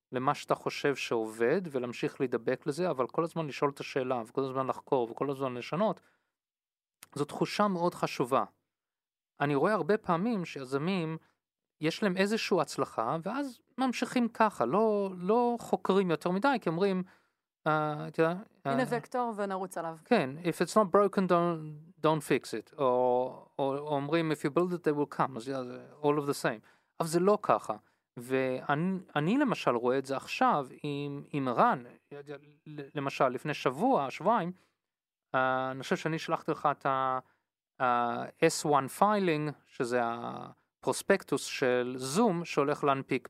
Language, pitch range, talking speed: Hebrew, 140-195 Hz, 125 wpm